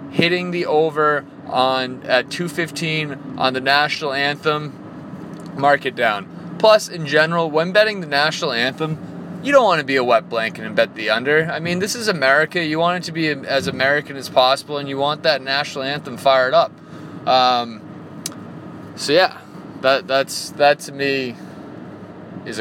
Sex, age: male, 20-39